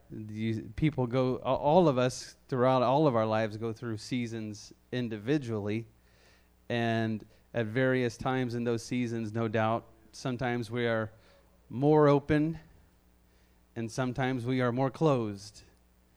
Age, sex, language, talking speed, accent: 30-49, male, English, 125 wpm, American